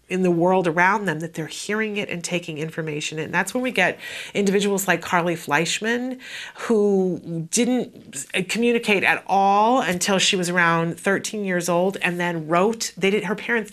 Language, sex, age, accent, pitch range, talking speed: English, female, 40-59, American, 170-210 Hz, 175 wpm